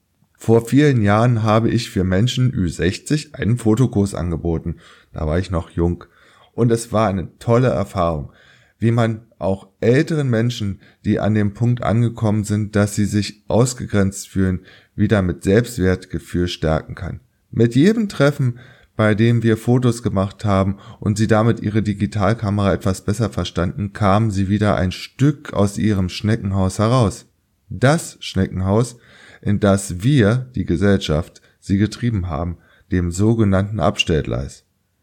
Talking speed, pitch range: 140 wpm, 95-115 Hz